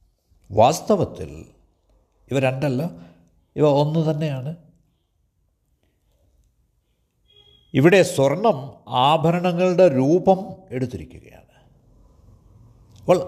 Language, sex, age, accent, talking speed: Malayalam, male, 60-79, native, 55 wpm